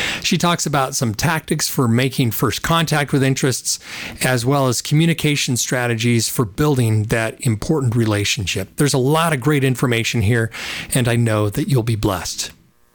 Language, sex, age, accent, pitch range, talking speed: English, male, 40-59, American, 120-165 Hz, 160 wpm